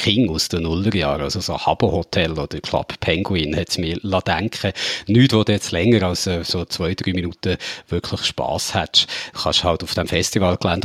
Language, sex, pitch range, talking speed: German, male, 90-115 Hz, 185 wpm